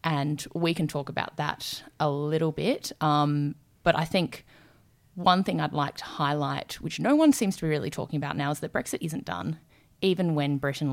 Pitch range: 145-160 Hz